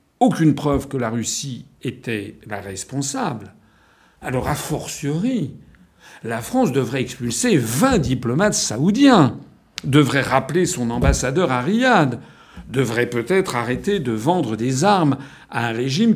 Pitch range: 125-165 Hz